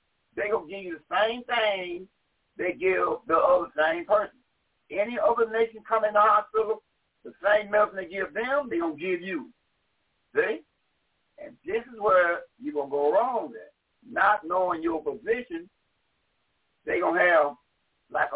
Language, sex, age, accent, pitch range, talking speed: English, male, 60-79, American, 200-320 Hz, 170 wpm